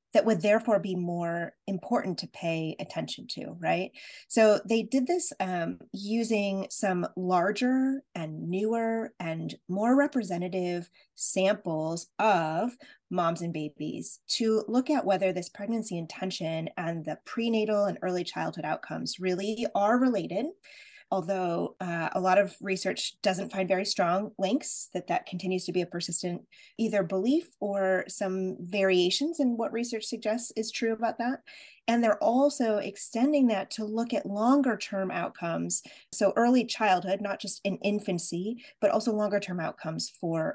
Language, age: English, 20-39